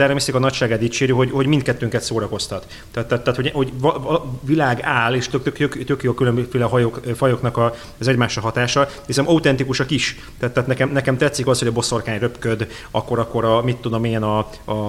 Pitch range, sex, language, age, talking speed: 115-135 Hz, male, Hungarian, 30-49, 200 wpm